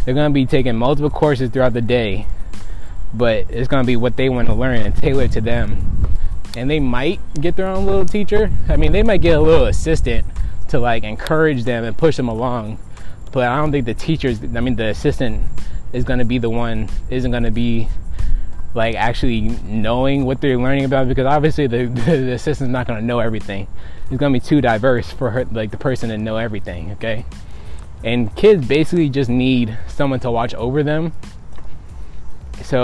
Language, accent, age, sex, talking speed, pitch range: English, American, 20-39, male, 190 wpm, 105-135 Hz